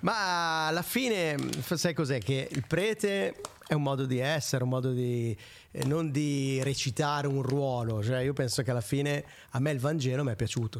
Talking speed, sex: 190 wpm, male